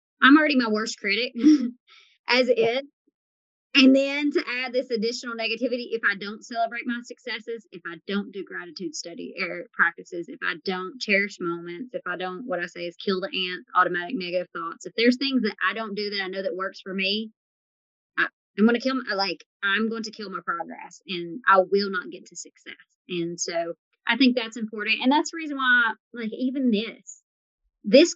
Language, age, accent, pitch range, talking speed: English, 30-49, American, 205-275 Hz, 200 wpm